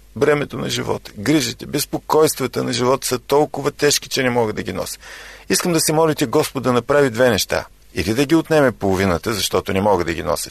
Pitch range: 95-145 Hz